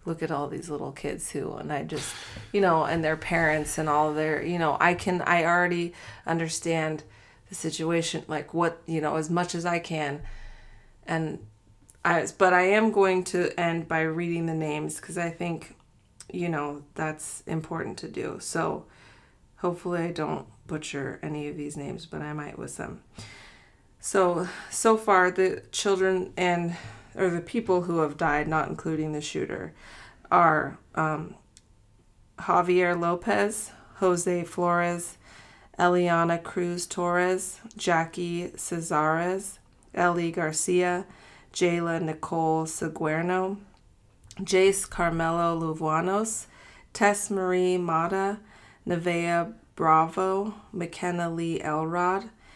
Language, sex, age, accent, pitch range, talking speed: English, female, 30-49, American, 155-180 Hz, 130 wpm